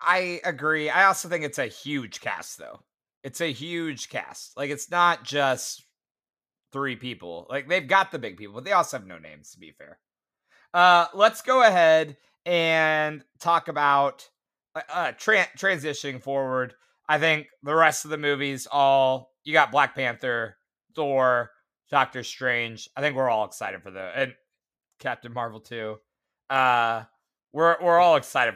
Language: English